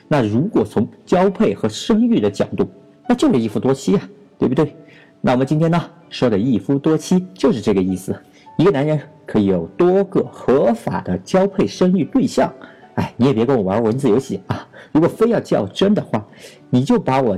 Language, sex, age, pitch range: Chinese, male, 50-69, 110-185 Hz